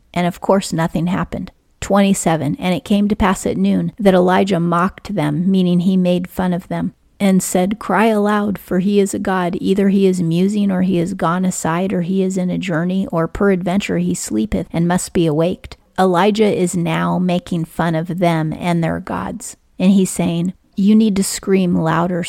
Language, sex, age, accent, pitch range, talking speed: English, female, 40-59, American, 170-195 Hz, 195 wpm